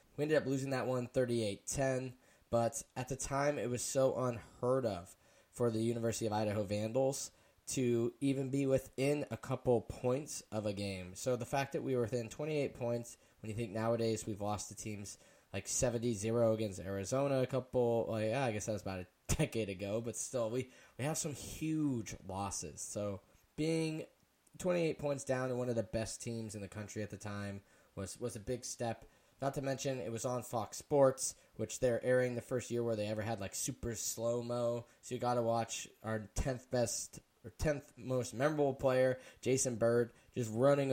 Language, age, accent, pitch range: English, 10-29, American, 110-130 Hz